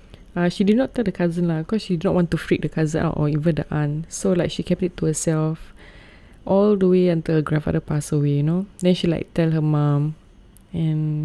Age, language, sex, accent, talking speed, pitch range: 20-39, English, female, Malaysian, 245 wpm, 155-185 Hz